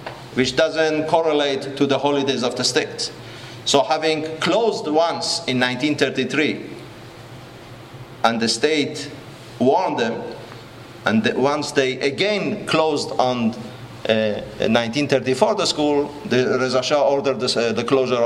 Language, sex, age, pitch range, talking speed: English, male, 40-59, 120-160 Hz, 120 wpm